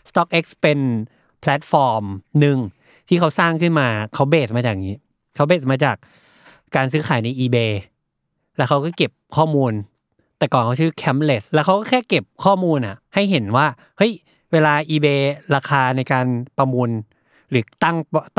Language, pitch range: Thai, 120-160 Hz